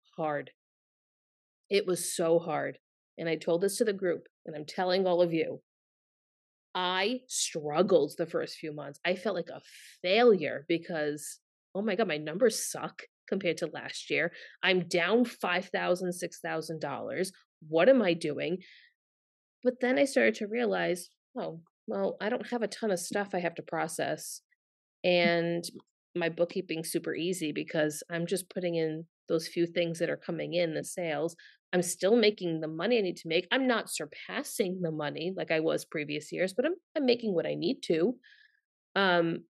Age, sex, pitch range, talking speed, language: 30-49, female, 165-210 Hz, 180 wpm, English